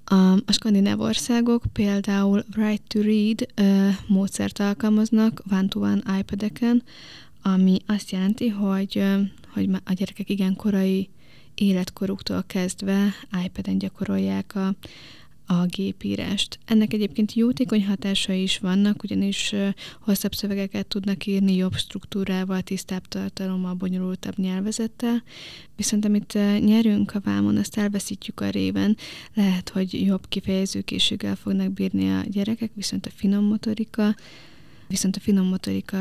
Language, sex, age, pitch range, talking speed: Hungarian, female, 20-39, 185-205 Hz, 115 wpm